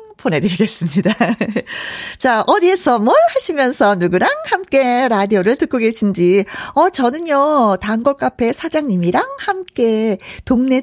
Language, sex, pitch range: Korean, female, 190-300 Hz